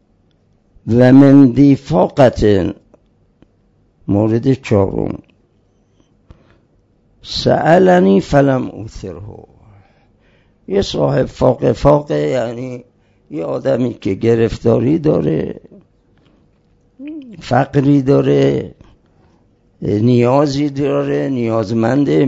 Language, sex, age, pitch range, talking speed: Persian, male, 60-79, 105-145 Hz, 60 wpm